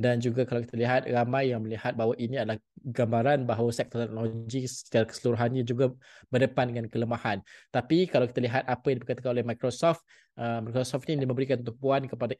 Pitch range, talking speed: 120-140 Hz, 170 wpm